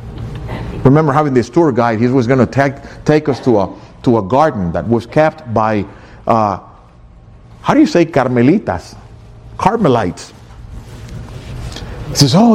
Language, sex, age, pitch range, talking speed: English, male, 50-69, 115-155 Hz, 150 wpm